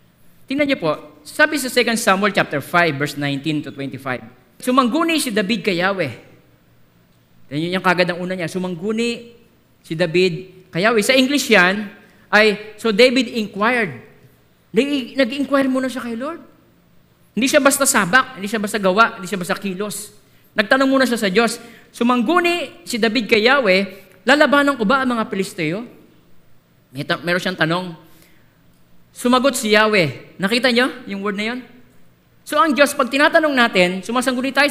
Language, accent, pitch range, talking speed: Filipino, native, 175-250 Hz, 155 wpm